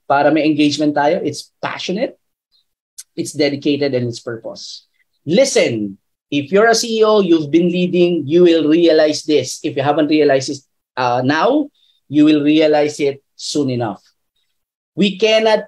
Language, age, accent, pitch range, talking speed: Filipino, 20-39, native, 145-190 Hz, 145 wpm